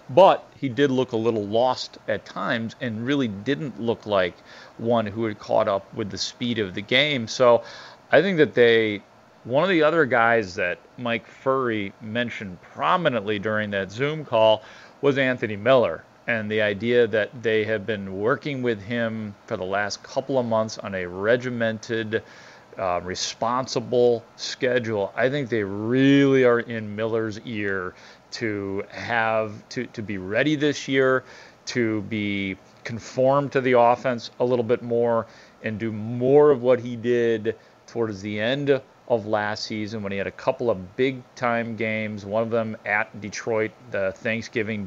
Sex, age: male, 40-59